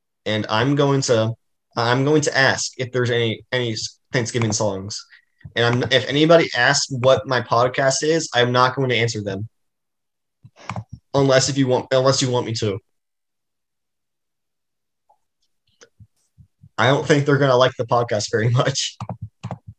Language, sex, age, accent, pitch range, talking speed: English, male, 20-39, American, 110-135 Hz, 150 wpm